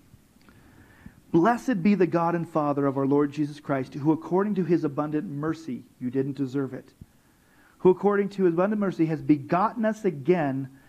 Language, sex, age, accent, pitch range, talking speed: English, male, 40-59, American, 135-190 Hz, 170 wpm